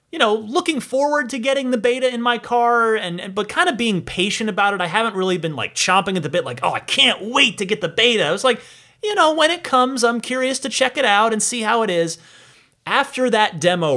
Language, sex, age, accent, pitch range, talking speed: English, male, 30-49, American, 125-200 Hz, 260 wpm